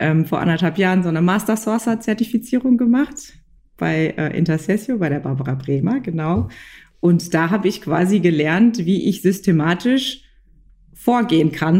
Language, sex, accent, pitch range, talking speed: German, female, German, 160-190 Hz, 125 wpm